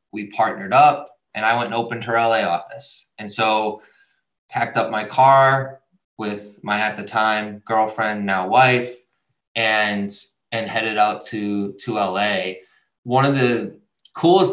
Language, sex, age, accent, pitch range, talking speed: English, male, 20-39, American, 110-135 Hz, 150 wpm